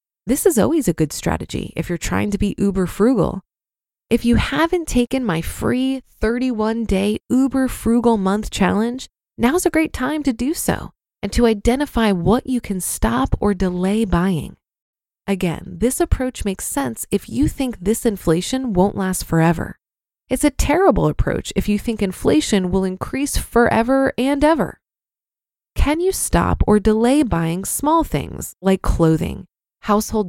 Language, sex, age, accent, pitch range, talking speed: English, female, 20-39, American, 190-260 Hz, 155 wpm